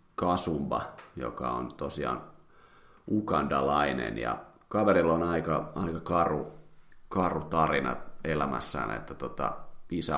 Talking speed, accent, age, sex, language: 100 wpm, native, 30-49, male, Finnish